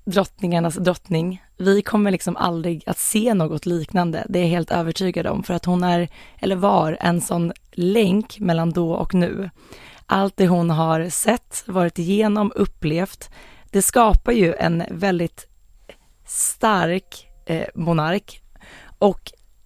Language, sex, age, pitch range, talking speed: Swedish, female, 20-39, 170-210 Hz, 140 wpm